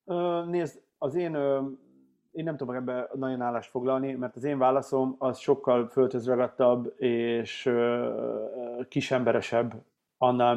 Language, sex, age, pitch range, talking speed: Hungarian, male, 30-49, 120-140 Hz, 115 wpm